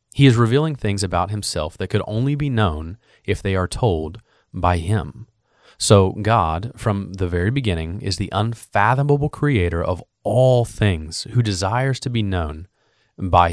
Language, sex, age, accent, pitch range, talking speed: English, male, 30-49, American, 90-115 Hz, 160 wpm